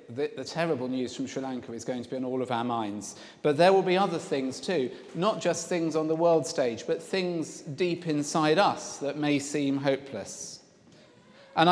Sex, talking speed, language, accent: male, 205 wpm, English, British